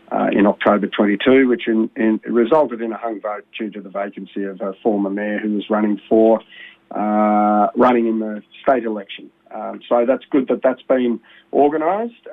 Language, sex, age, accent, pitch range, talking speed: English, male, 40-59, Australian, 105-120 Hz, 185 wpm